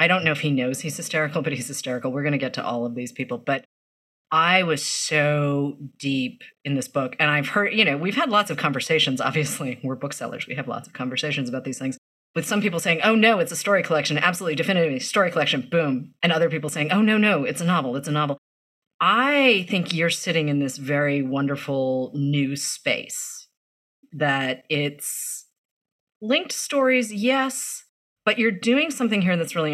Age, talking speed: 30-49, 200 wpm